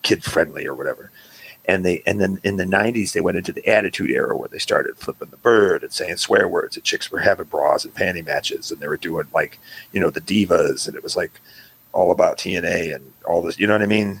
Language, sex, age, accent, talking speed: English, male, 40-59, American, 245 wpm